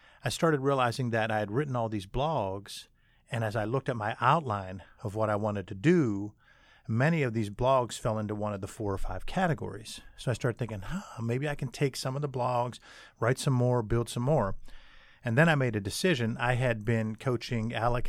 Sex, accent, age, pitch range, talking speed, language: male, American, 50-69, 105-125 Hz, 215 wpm, English